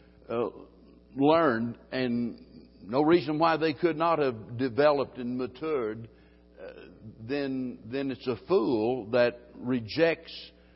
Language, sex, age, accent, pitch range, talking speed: English, male, 60-79, American, 120-150 Hz, 115 wpm